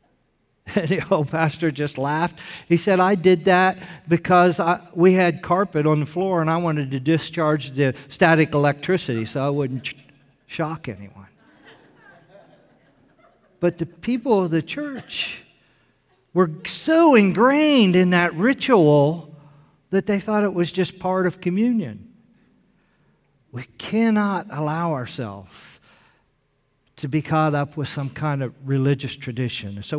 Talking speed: 130 wpm